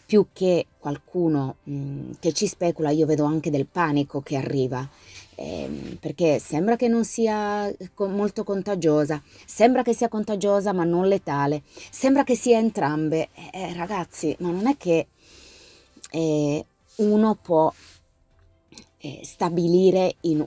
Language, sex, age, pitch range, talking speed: Italian, female, 30-49, 145-205 Hz, 125 wpm